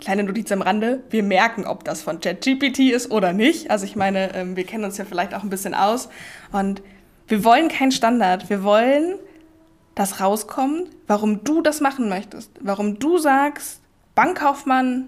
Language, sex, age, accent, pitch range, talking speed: German, female, 10-29, German, 205-270 Hz, 170 wpm